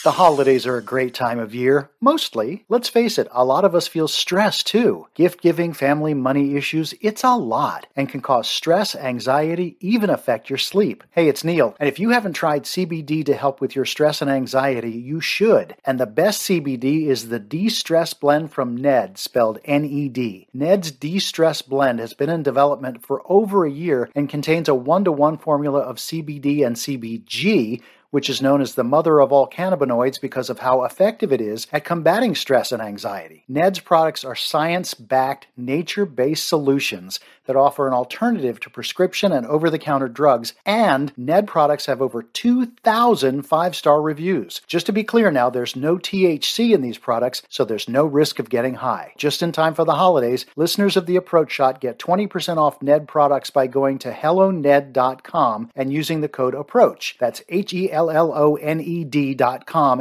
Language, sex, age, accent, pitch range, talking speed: English, male, 50-69, American, 135-175 Hz, 180 wpm